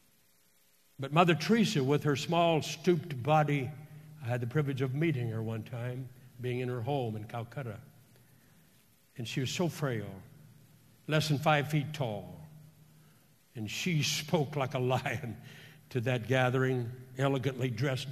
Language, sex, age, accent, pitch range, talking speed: English, male, 60-79, American, 125-165 Hz, 145 wpm